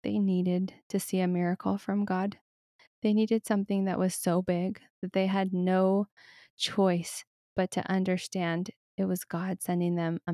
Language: English